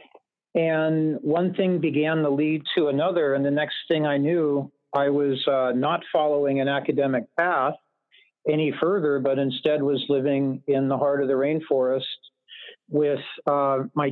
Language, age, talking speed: English, 50-69, 155 wpm